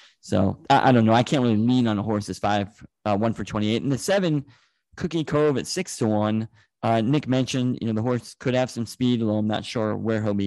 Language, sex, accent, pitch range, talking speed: English, male, American, 110-135 Hz, 260 wpm